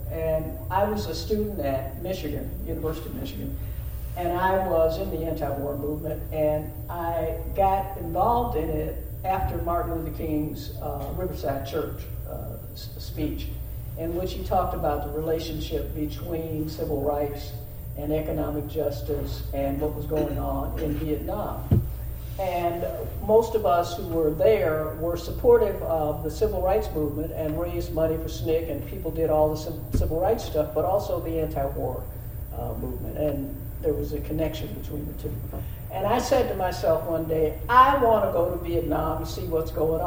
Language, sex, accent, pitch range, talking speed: English, female, American, 140-165 Hz, 165 wpm